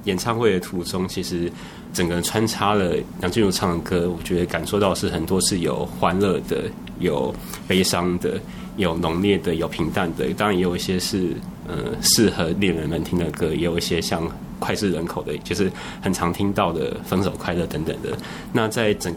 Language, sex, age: Chinese, male, 20-39